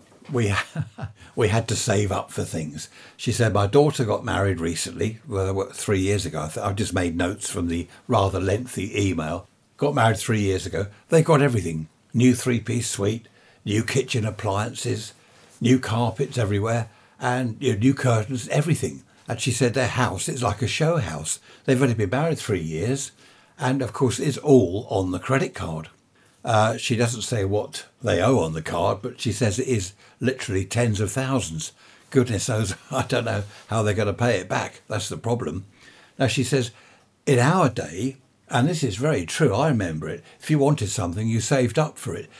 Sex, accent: male, British